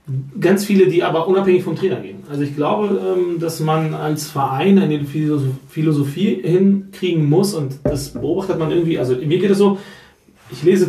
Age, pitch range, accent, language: 30-49, 130-170 Hz, German, German